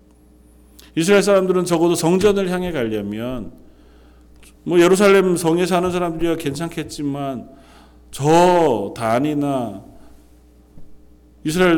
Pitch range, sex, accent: 100-150 Hz, male, native